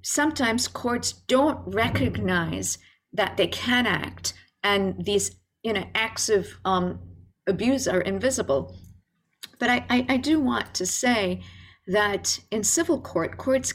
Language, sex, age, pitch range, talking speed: English, female, 50-69, 180-235 Hz, 135 wpm